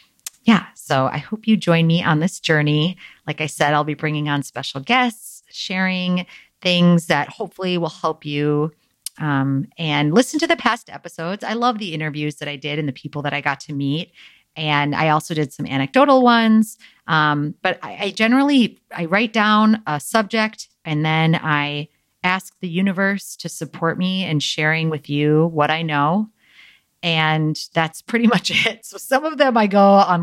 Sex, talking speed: female, 185 wpm